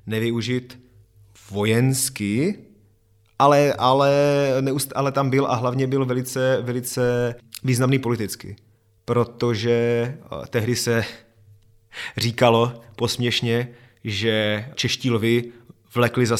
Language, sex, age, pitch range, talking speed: Czech, male, 30-49, 105-125 Hz, 90 wpm